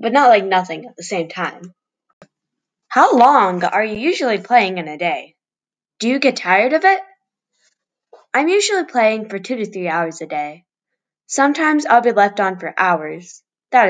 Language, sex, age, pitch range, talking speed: English, female, 10-29, 165-255 Hz, 175 wpm